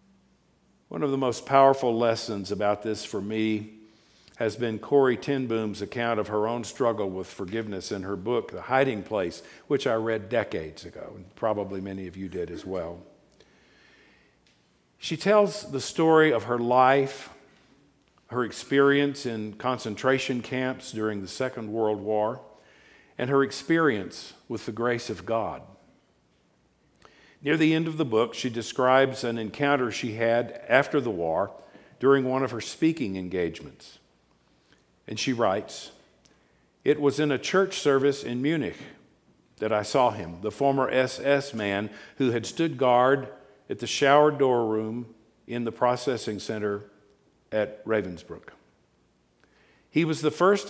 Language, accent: English, American